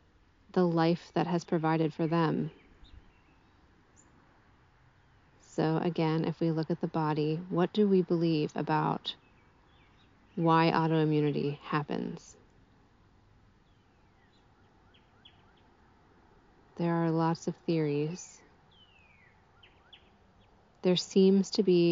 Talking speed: 90 wpm